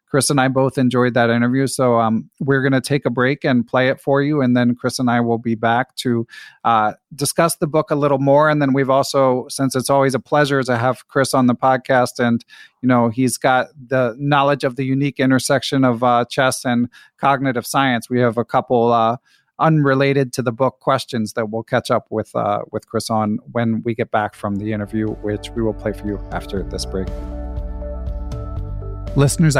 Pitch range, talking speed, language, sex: 120-140 Hz, 210 wpm, English, male